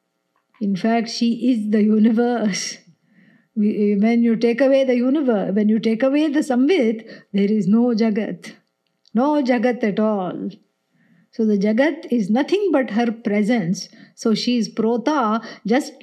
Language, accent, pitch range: English, Indian, 210-260 Hz